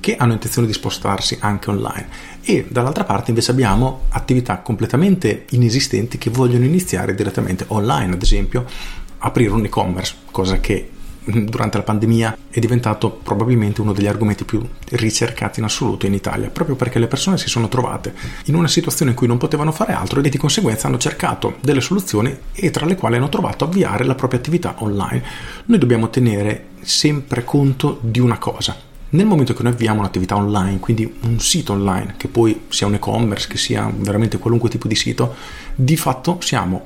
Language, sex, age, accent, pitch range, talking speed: Italian, male, 40-59, native, 100-130 Hz, 180 wpm